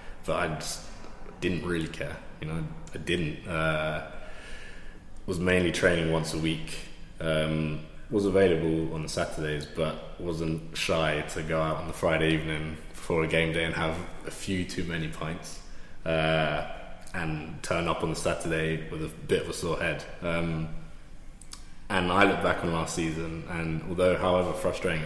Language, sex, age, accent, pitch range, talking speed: English, male, 20-39, British, 80-85 Hz, 170 wpm